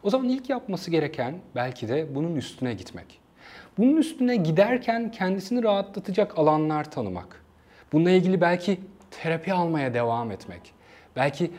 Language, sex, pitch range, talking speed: Turkish, male, 130-205 Hz, 130 wpm